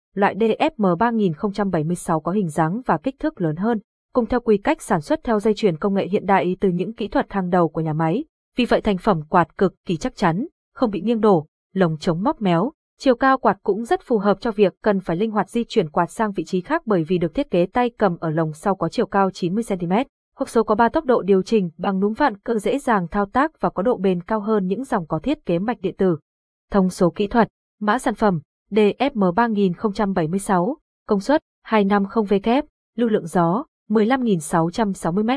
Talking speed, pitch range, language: 220 wpm, 185-235 Hz, Vietnamese